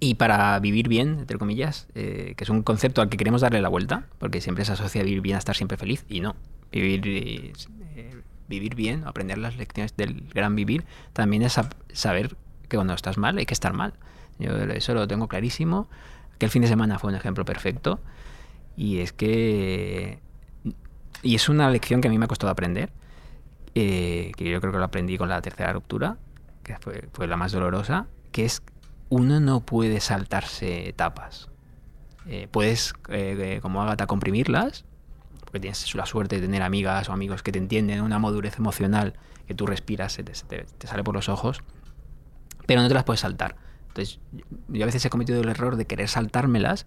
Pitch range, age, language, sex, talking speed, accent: 95-120 Hz, 20-39, Spanish, male, 195 wpm, Spanish